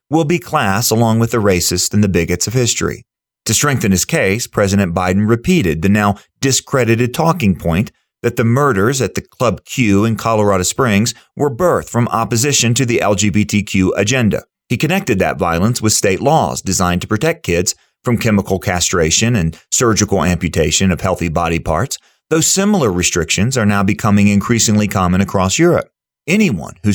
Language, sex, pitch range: English, male, 95-125 Hz